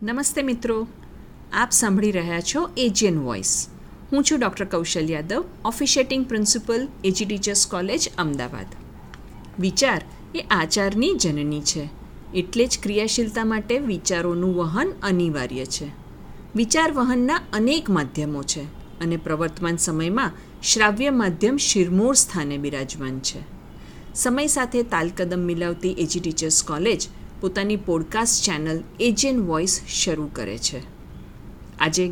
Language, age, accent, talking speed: Gujarati, 50-69, native, 115 wpm